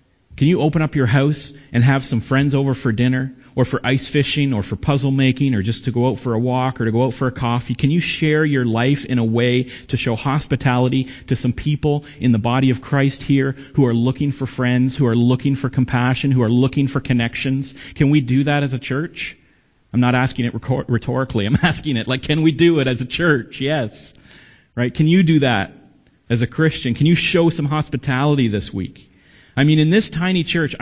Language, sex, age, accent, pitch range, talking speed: English, male, 40-59, American, 120-155 Hz, 225 wpm